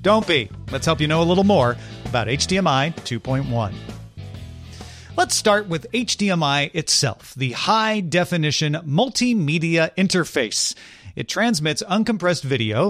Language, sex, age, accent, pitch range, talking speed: English, male, 40-59, American, 130-185 Hz, 115 wpm